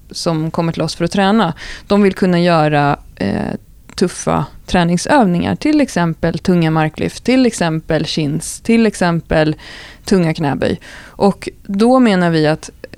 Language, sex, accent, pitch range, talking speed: Swedish, female, native, 175-210 Hz, 135 wpm